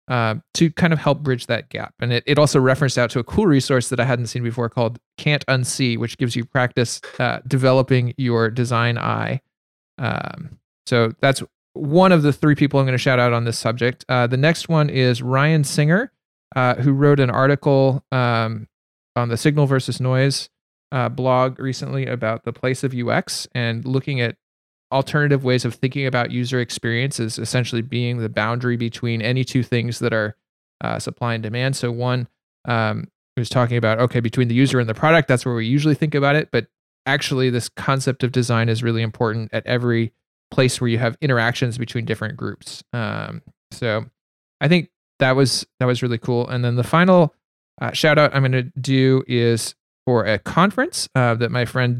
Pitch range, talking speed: 120-135 Hz, 195 wpm